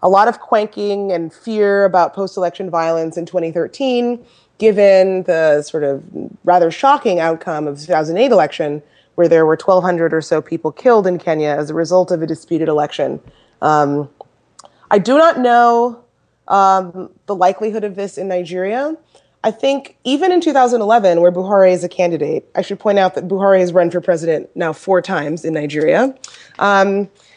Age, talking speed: 20-39, 170 wpm